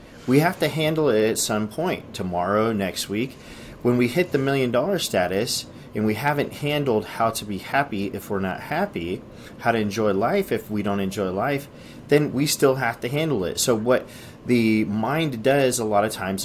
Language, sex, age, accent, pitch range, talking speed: English, male, 30-49, American, 100-125 Hz, 200 wpm